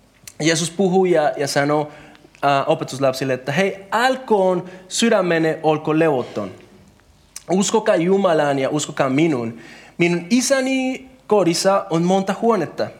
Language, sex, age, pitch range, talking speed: Finnish, male, 30-49, 145-210 Hz, 100 wpm